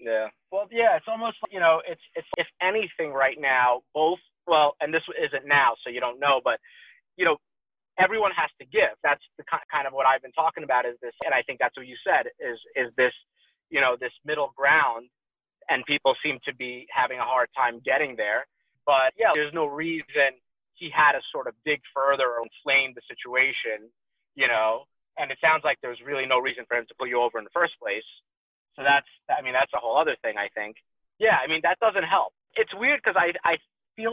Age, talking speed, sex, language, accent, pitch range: 30-49, 225 wpm, male, English, American, 135-195 Hz